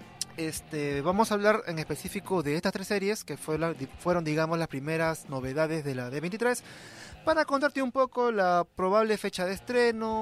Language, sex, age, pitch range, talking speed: Spanish, male, 30-49, 155-205 Hz, 180 wpm